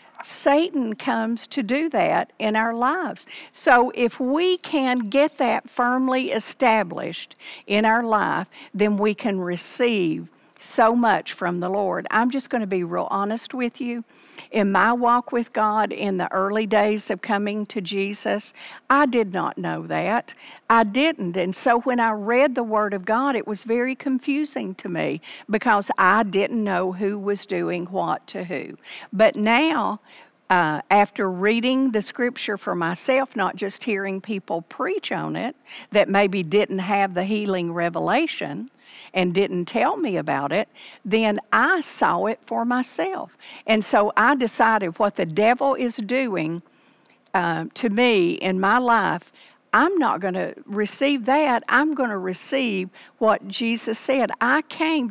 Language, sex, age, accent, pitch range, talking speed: English, female, 50-69, American, 195-260 Hz, 160 wpm